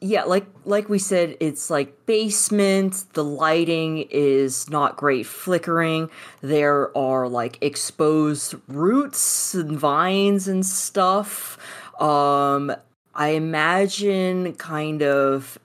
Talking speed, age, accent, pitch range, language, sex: 105 wpm, 30-49, American, 140-175 Hz, English, female